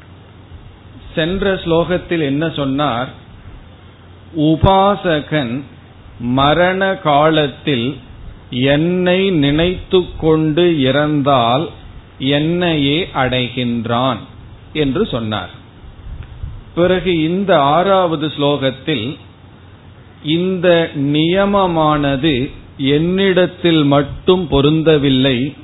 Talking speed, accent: 55 wpm, native